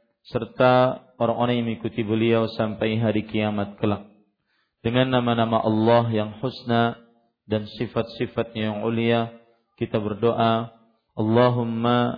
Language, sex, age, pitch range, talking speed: Malay, male, 40-59, 110-120 Hz, 105 wpm